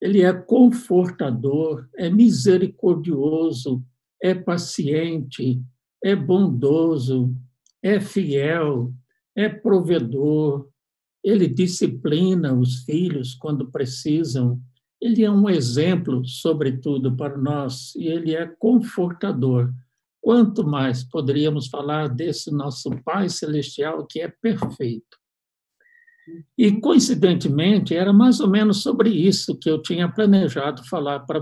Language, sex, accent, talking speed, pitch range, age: Portuguese, male, Brazilian, 105 wpm, 140-190 Hz, 60-79